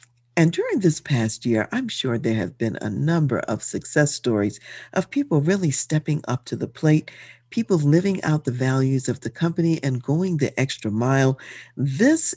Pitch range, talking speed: 120-170 Hz, 180 wpm